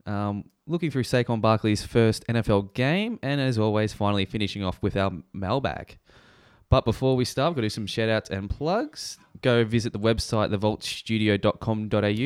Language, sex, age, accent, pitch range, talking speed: English, male, 20-39, Australian, 105-135 Hz, 170 wpm